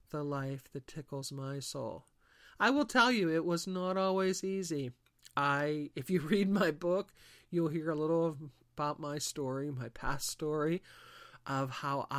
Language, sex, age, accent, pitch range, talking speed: English, male, 50-69, American, 135-165 Hz, 160 wpm